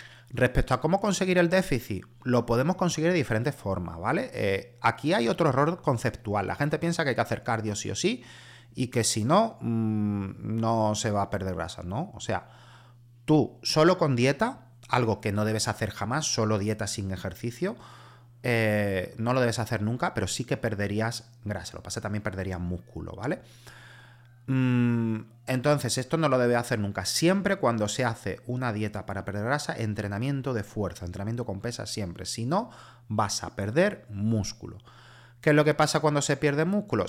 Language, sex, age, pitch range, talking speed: Spanish, male, 30-49, 105-130 Hz, 185 wpm